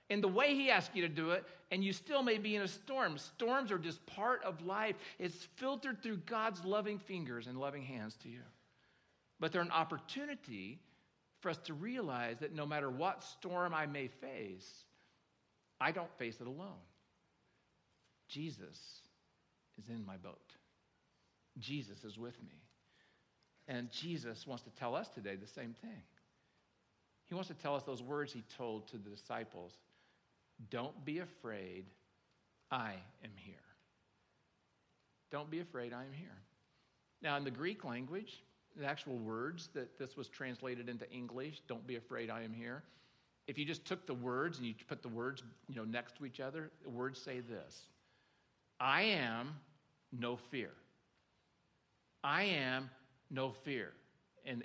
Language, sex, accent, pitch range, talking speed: English, male, American, 120-175 Hz, 160 wpm